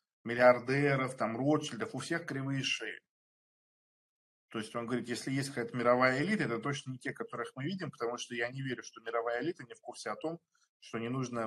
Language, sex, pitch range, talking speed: Russian, male, 115-145 Hz, 205 wpm